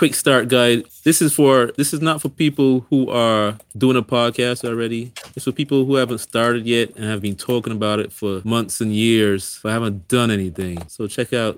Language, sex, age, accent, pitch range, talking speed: English, male, 30-49, American, 105-125 Hz, 210 wpm